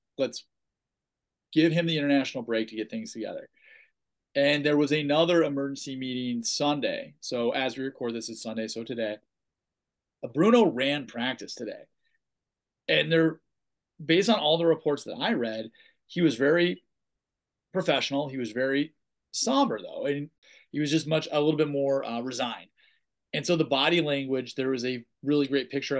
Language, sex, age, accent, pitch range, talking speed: English, male, 30-49, American, 130-175 Hz, 165 wpm